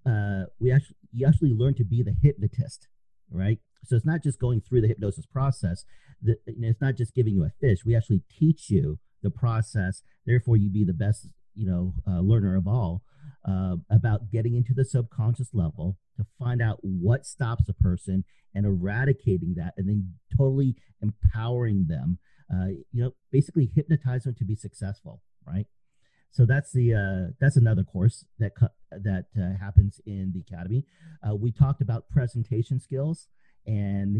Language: English